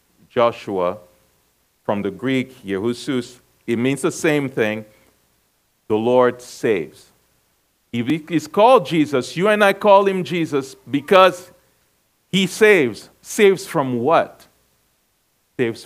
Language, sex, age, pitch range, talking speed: English, male, 50-69, 120-170 Hz, 115 wpm